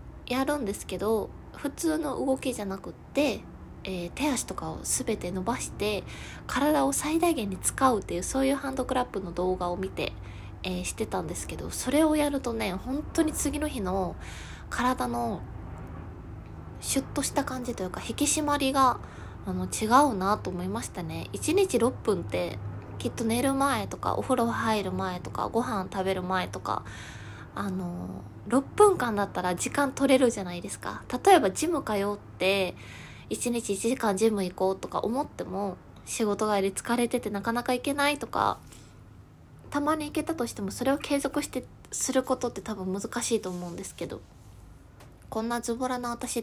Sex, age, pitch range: female, 20-39, 185-270 Hz